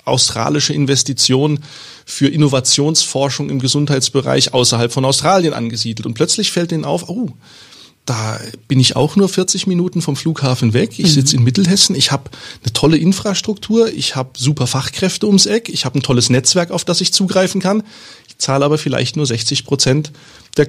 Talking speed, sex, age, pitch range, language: 170 wpm, male, 30-49, 140-175 Hz, German